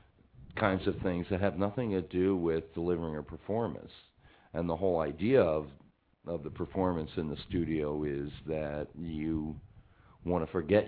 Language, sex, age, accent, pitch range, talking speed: English, male, 50-69, American, 75-90 Hz, 160 wpm